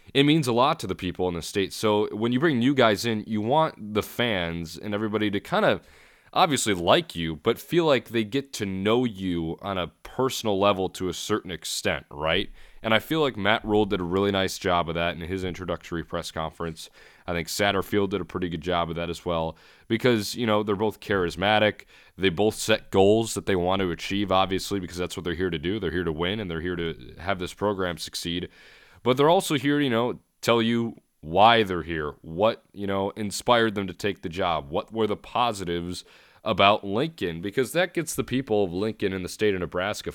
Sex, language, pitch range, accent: male, English, 90-110 Hz, American